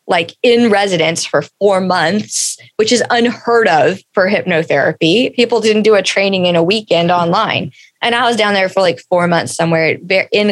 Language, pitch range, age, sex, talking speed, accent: English, 165-195 Hz, 20-39, female, 185 wpm, American